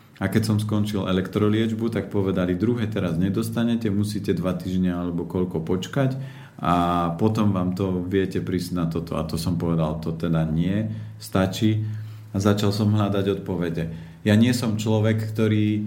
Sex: male